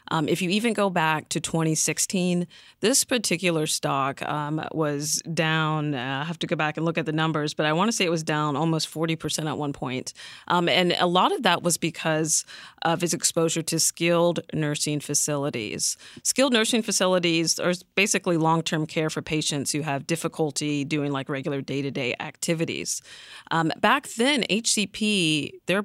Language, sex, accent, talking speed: English, female, American, 175 wpm